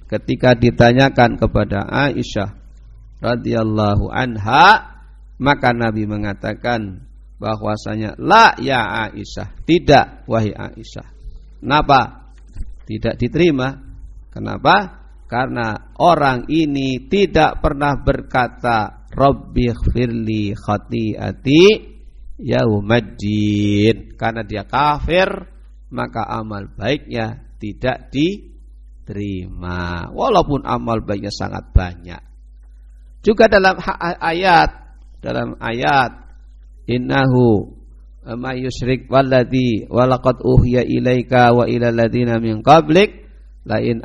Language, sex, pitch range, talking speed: Indonesian, male, 100-125 Hz, 85 wpm